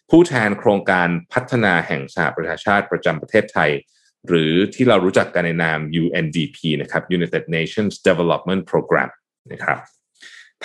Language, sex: Thai, male